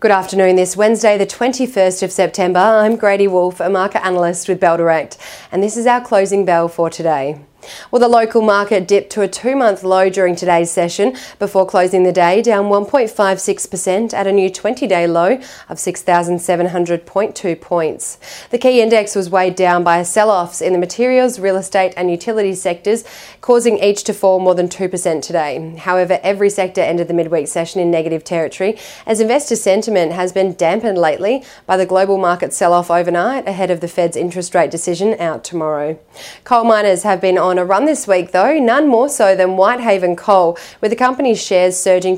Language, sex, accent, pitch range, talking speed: English, female, Australian, 175-210 Hz, 185 wpm